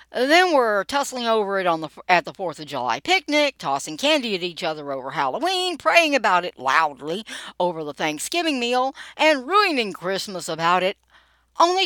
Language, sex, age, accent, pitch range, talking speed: English, female, 60-79, American, 150-245 Hz, 160 wpm